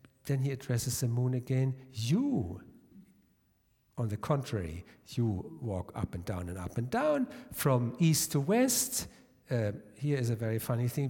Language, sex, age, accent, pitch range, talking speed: English, male, 60-79, German, 120-170 Hz, 160 wpm